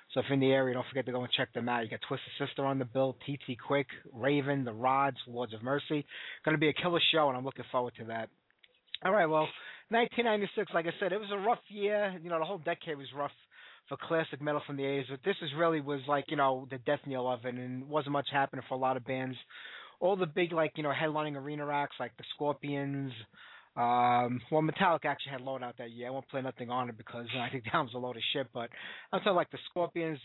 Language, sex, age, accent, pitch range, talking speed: English, male, 20-39, American, 130-155 Hz, 260 wpm